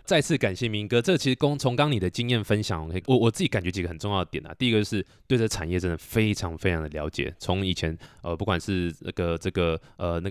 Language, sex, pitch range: Chinese, male, 85-105 Hz